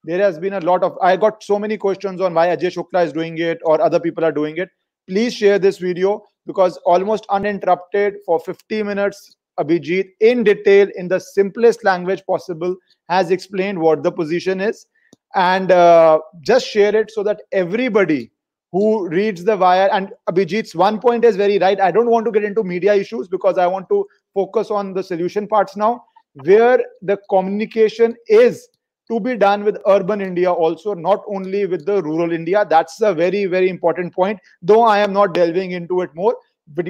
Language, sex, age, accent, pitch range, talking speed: Hindi, male, 30-49, native, 180-210 Hz, 190 wpm